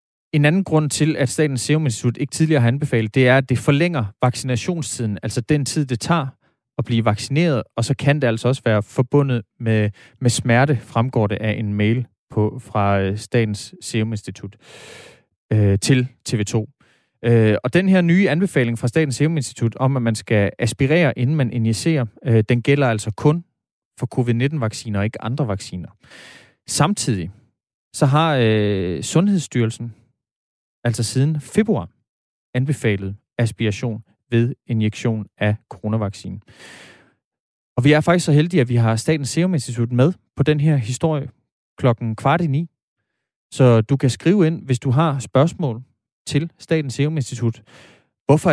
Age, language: 30-49, Danish